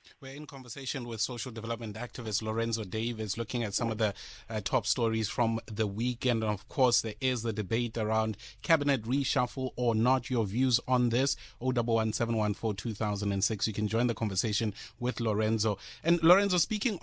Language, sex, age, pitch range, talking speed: English, male, 30-49, 110-135 Hz, 200 wpm